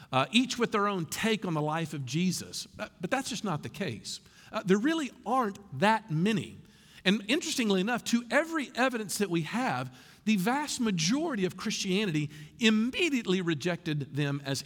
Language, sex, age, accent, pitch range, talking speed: English, male, 50-69, American, 155-225 Hz, 170 wpm